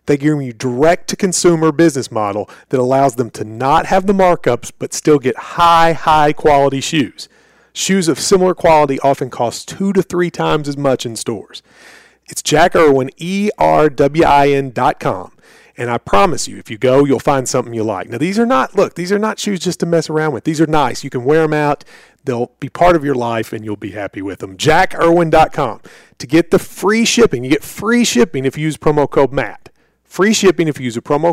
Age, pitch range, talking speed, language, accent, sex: 40-59, 130-170 Hz, 205 wpm, English, American, male